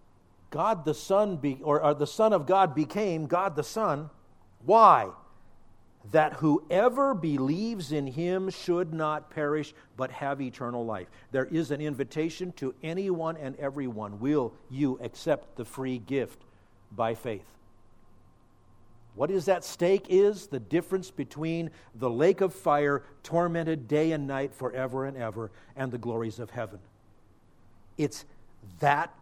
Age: 50-69